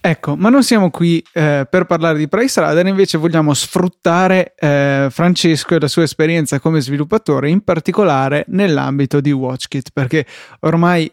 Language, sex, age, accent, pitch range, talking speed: Italian, male, 20-39, native, 140-165 Hz, 150 wpm